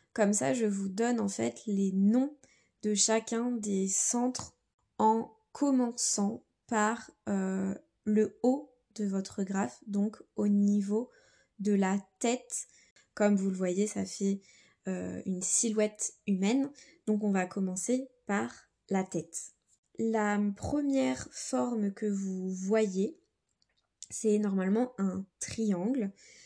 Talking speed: 125 wpm